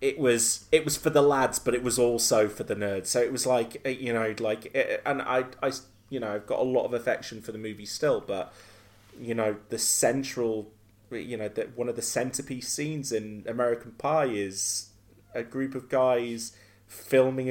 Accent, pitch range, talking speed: British, 110-145 Hz, 200 wpm